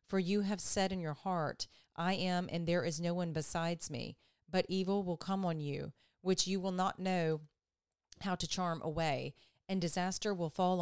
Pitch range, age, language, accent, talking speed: 165-190 Hz, 40-59, English, American, 195 wpm